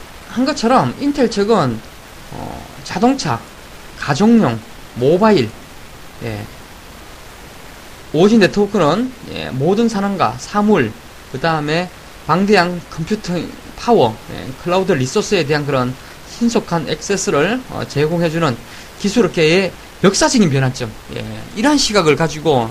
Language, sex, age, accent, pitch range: Korean, male, 20-39, native, 135-210 Hz